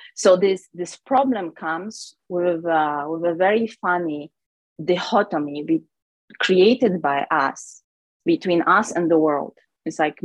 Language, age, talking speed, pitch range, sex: English, 20-39, 135 wpm, 160-205 Hz, female